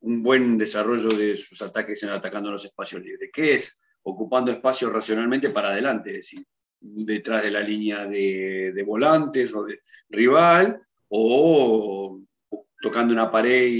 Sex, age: male, 40-59